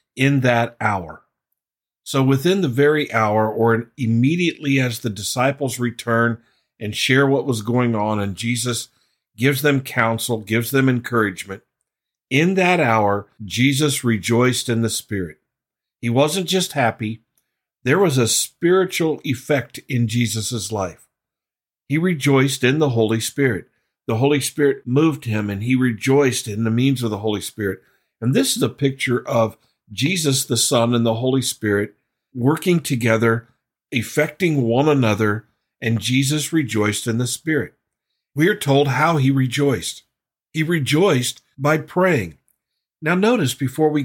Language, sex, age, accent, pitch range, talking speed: English, male, 50-69, American, 115-145 Hz, 145 wpm